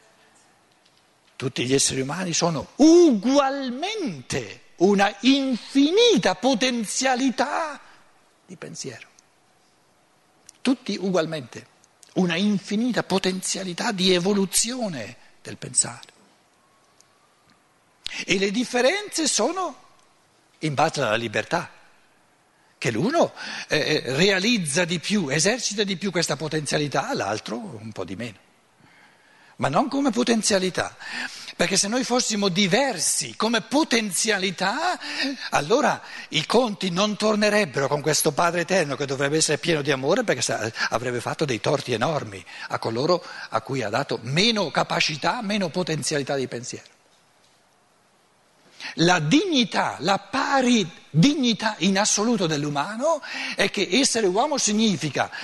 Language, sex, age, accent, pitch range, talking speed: Italian, male, 60-79, native, 155-245 Hz, 110 wpm